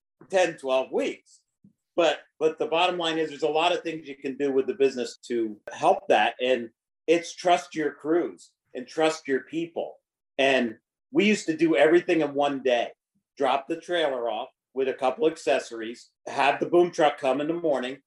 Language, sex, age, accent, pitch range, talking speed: English, male, 50-69, American, 125-160 Hz, 190 wpm